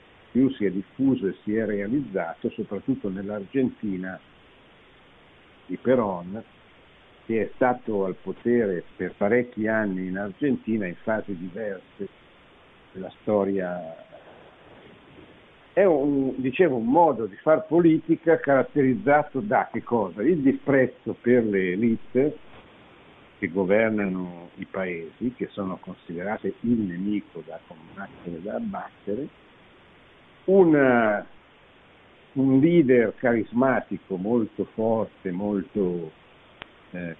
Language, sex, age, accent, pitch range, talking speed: Italian, male, 60-79, native, 100-130 Hz, 105 wpm